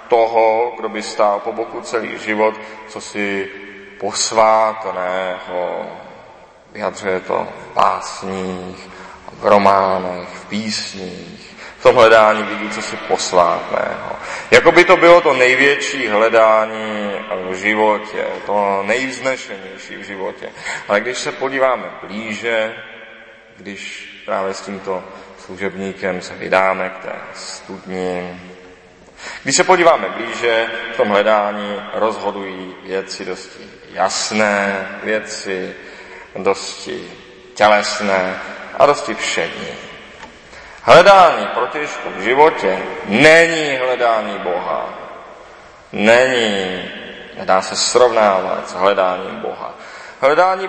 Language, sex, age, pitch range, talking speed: Czech, male, 30-49, 95-110 Hz, 100 wpm